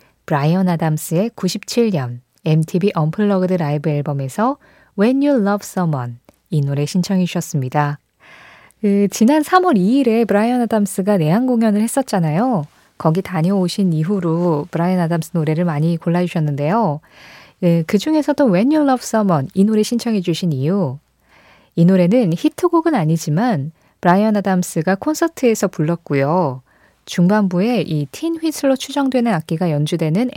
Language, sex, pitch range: Korean, female, 160-225 Hz